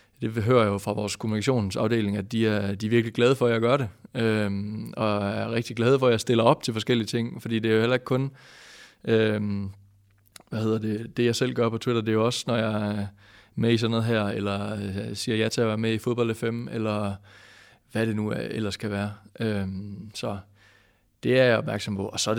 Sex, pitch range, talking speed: male, 105-120 Hz, 235 wpm